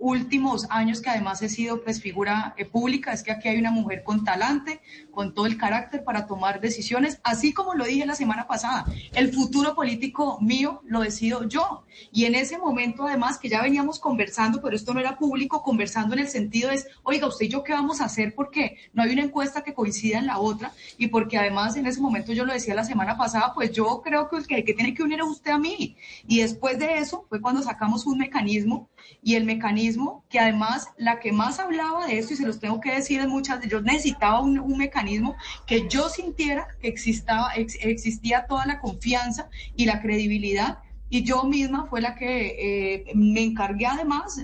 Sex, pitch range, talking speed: female, 220-275 Hz, 215 wpm